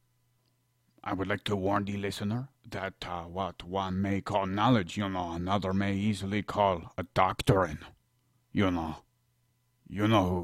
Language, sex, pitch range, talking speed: English, male, 95-125 Hz, 155 wpm